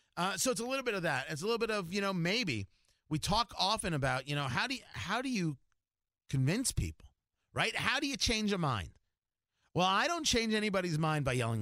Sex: male